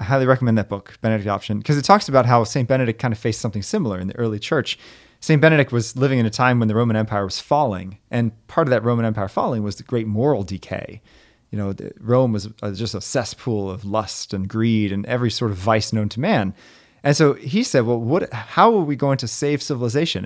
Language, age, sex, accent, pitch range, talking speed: English, 30-49, male, American, 105-135 Hz, 235 wpm